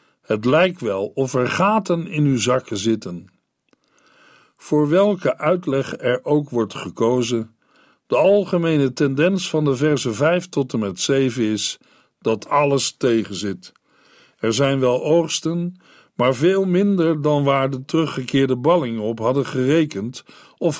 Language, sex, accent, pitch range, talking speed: Dutch, male, Dutch, 130-180 Hz, 140 wpm